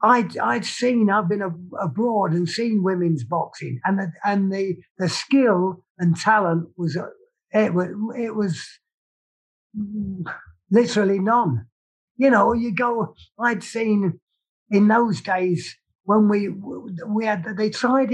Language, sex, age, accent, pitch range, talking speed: English, male, 50-69, British, 165-210 Hz, 130 wpm